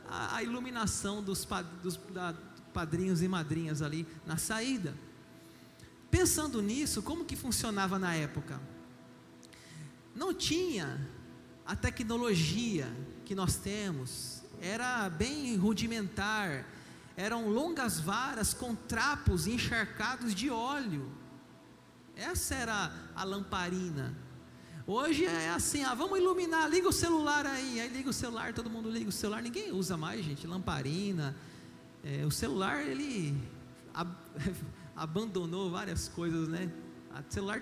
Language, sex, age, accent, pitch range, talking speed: Portuguese, male, 40-59, Brazilian, 160-230 Hz, 110 wpm